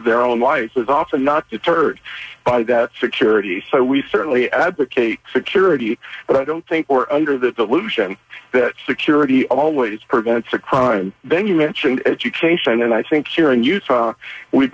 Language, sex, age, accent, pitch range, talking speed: English, male, 50-69, American, 120-155 Hz, 165 wpm